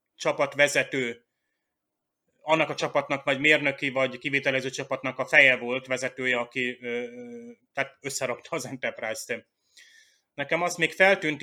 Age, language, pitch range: 30-49, Hungarian, 125-145 Hz